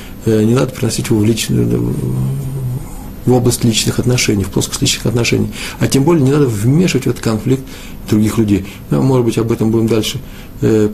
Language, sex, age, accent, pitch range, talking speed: Russian, male, 50-69, native, 105-135 Hz, 180 wpm